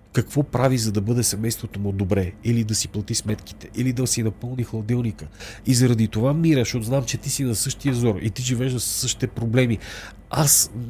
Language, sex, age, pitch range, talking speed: Bulgarian, male, 40-59, 105-135 Hz, 205 wpm